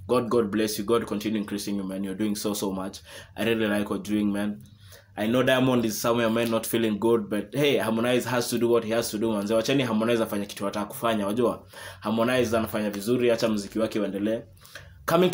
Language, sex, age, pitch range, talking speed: English, male, 20-39, 105-125 Hz, 170 wpm